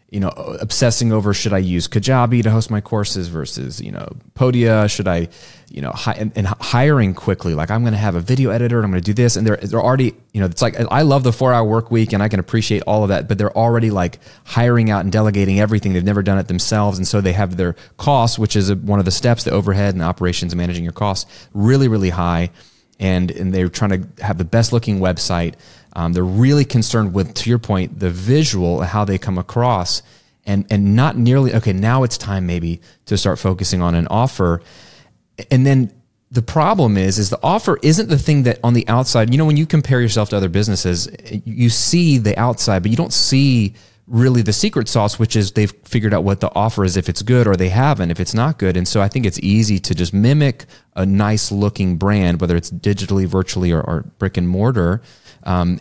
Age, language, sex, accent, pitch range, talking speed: 30-49, English, male, American, 95-120 Hz, 230 wpm